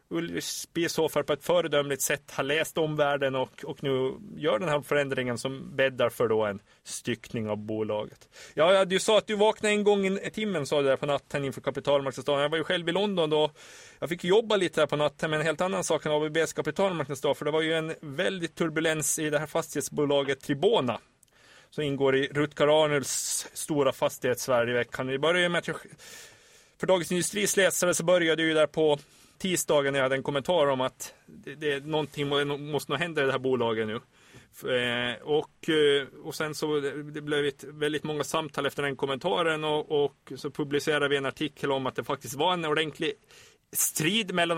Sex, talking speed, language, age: male, 190 wpm, Swedish, 30-49